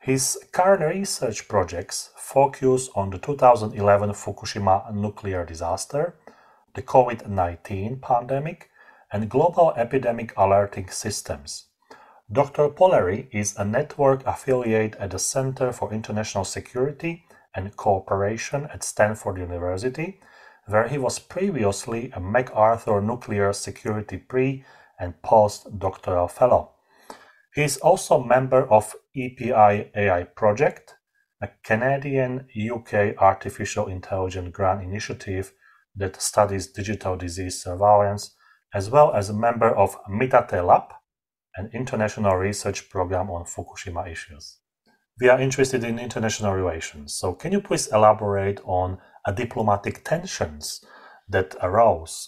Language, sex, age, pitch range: English, male, 30-49, 95-125 Hz